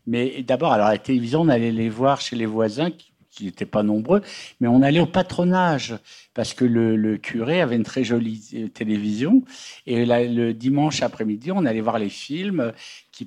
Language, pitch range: French, 120-155 Hz